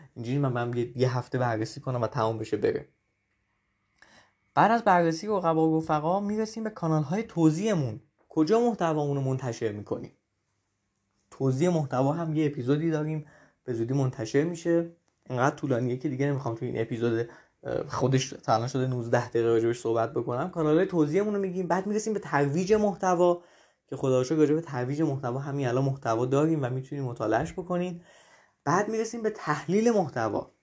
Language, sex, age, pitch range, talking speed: Persian, male, 20-39, 125-170 Hz, 150 wpm